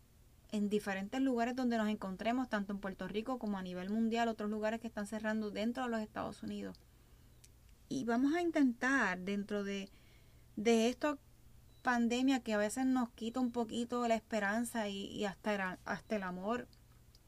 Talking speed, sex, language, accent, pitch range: 170 wpm, female, Spanish, American, 205-240 Hz